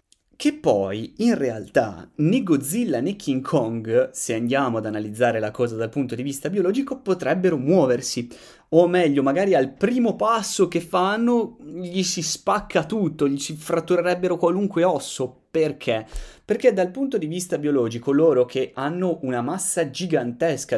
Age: 30-49